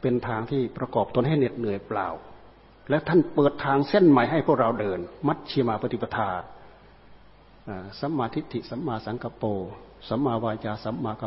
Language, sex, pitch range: Thai, male, 120-160 Hz